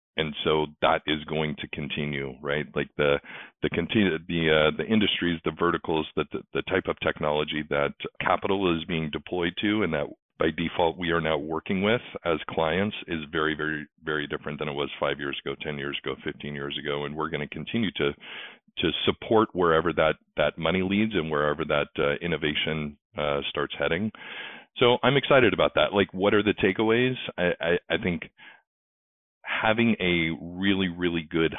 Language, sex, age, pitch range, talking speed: English, male, 40-59, 75-90 Hz, 185 wpm